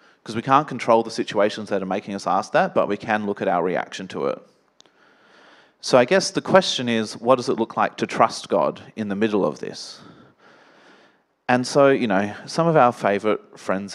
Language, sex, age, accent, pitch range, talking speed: English, male, 30-49, Australian, 105-135 Hz, 210 wpm